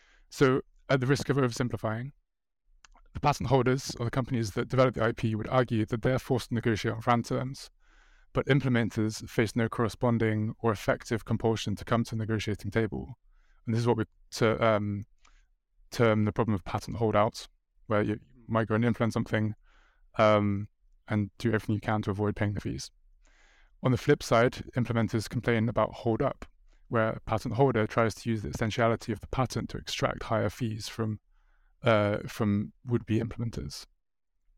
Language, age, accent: English, 20-39, British